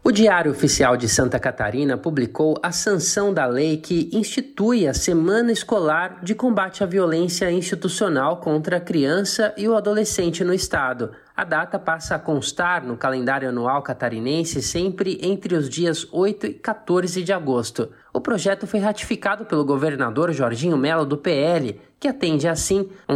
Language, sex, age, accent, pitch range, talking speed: Portuguese, male, 20-39, Brazilian, 140-195 Hz, 160 wpm